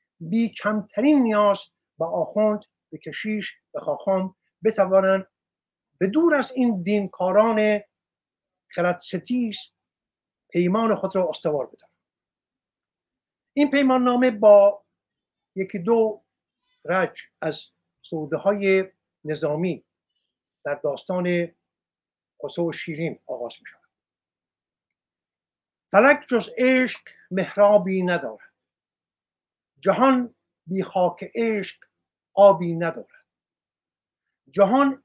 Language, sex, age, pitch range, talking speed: Persian, male, 60-79, 175-230 Hz, 85 wpm